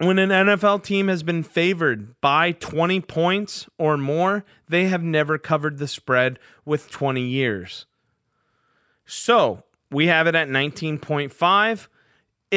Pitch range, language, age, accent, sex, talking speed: 140-180 Hz, English, 30-49, American, male, 130 wpm